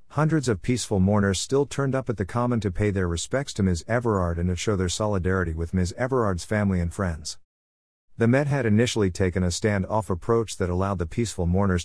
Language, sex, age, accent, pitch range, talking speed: English, male, 50-69, American, 90-115 Hz, 210 wpm